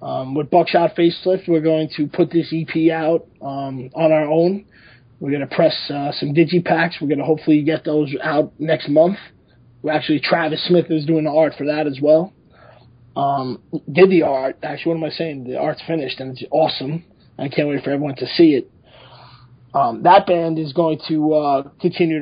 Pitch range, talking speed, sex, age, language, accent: 140-165 Hz, 200 wpm, male, 20-39, English, American